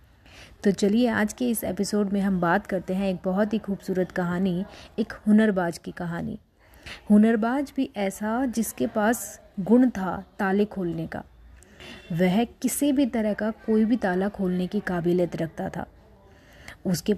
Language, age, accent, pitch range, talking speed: Hindi, 30-49, native, 185-235 Hz, 155 wpm